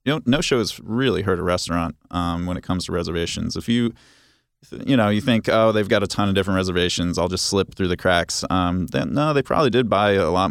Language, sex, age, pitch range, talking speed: English, male, 20-39, 85-100 Hz, 250 wpm